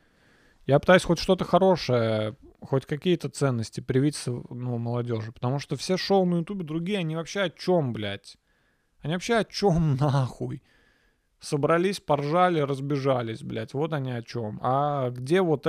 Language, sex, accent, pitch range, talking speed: Russian, male, native, 125-180 Hz, 150 wpm